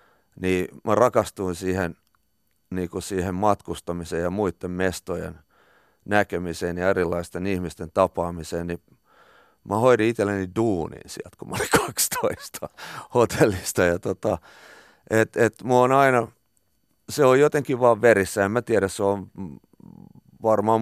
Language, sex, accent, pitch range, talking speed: Finnish, male, native, 90-105 Hz, 125 wpm